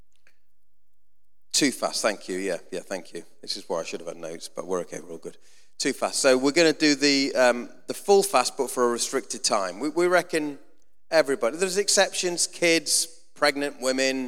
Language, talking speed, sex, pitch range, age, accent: English, 200 wpm, male, 120-170 Hz, 30-49, British